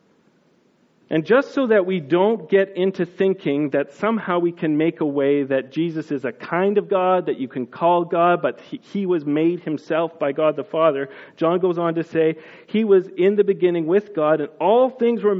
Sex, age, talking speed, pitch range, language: male, 40-59, 205 wpm, 155-215 Hz, English